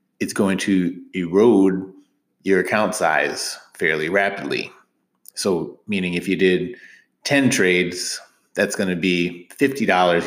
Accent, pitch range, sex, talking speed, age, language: American, 90-105 Hz, male, 125 wpm, 30-49, English